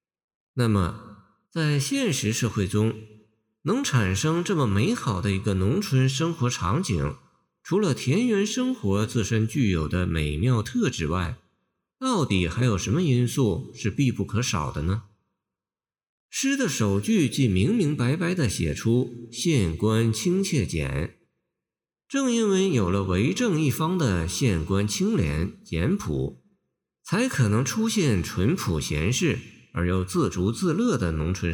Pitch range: 100-155 Hz